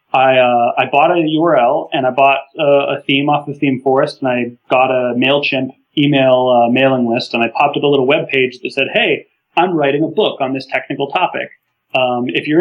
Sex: male